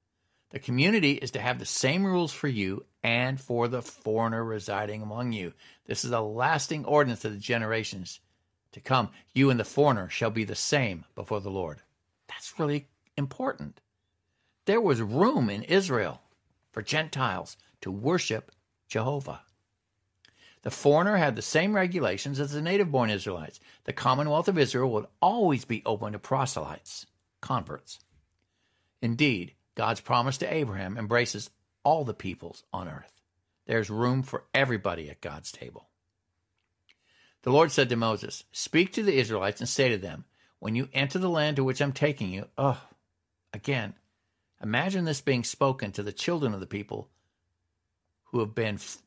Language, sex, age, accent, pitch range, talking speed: English, male, 60-79, American, 95-135 Hz, 155 wpm